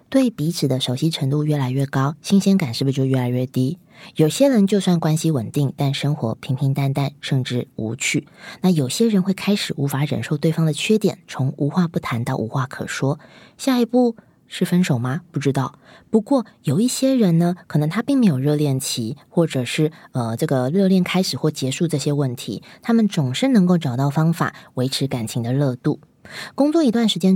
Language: Chinese